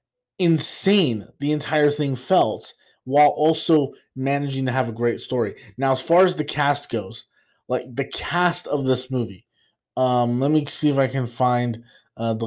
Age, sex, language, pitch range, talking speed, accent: 20-39, male, English, 130-165 Hz, 175 wpm, American